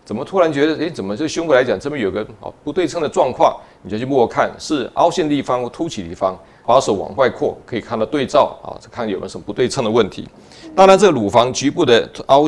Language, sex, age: Chinese, male, 40-59